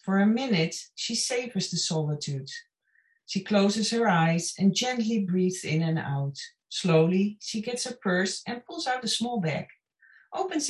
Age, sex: 40-59, female